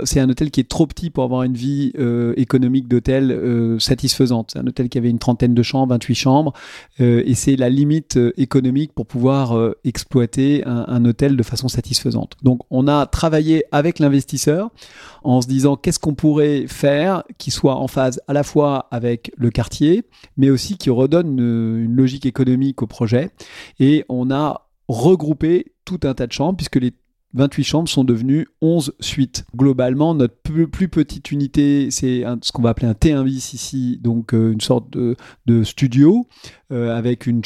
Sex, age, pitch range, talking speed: male, 30-49, 125-145 Hz, 185 wpm